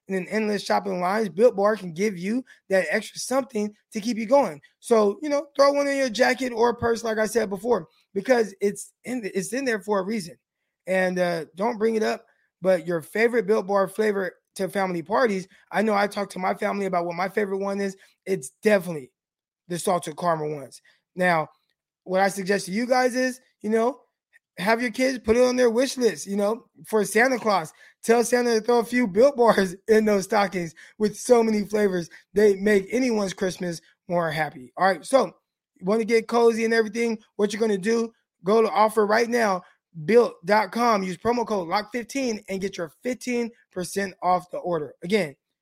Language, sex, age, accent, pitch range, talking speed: English, male, 20-39, American, 185-230 Hz, 195 wpm